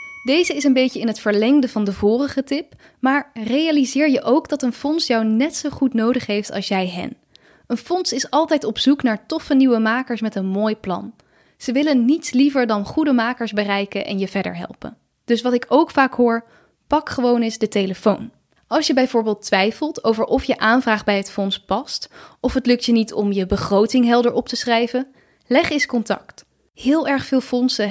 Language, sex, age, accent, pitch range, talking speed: Dutch, female, 10-29, Dutch, 210-275 Hz, 205 wpm